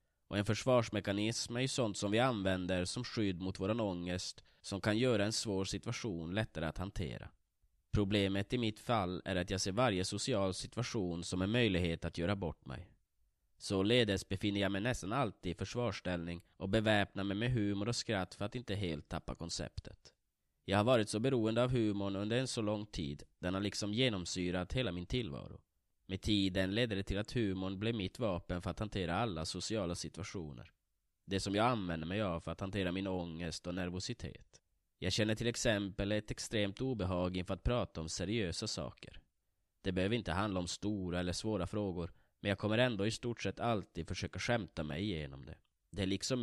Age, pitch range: 20-39, 90-110 Hz